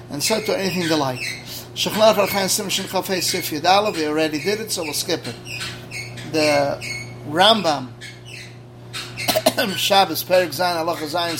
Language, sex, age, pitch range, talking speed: English, male, 30-49, 135-190 Hz, 100 wpm